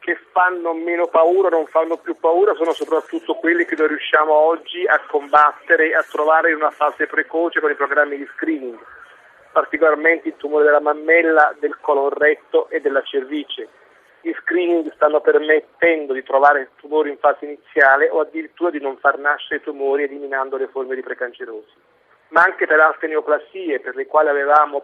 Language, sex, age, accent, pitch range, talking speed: Italian, male, 40-59, native, 145-165 Hz, 175 wpm